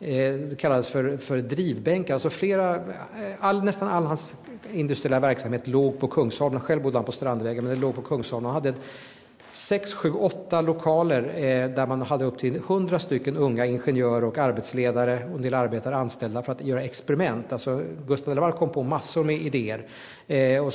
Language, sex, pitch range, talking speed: Swedish, male, 125-150 Hz, 170 wpm